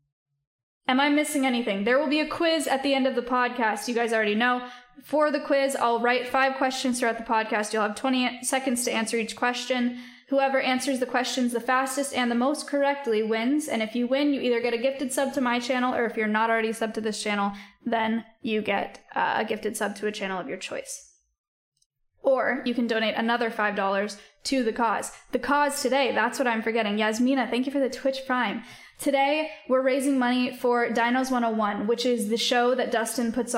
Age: 10-29